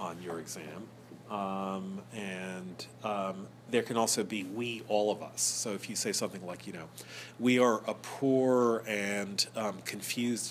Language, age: English, 40-59